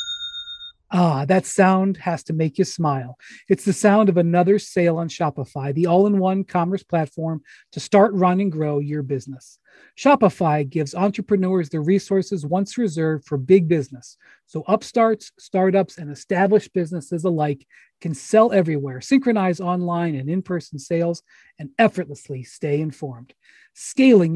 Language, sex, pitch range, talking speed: English, male, 150-195 Hz, 140 wpm